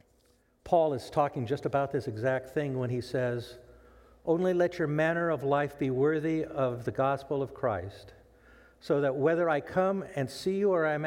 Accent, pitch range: American, 95-150 Hz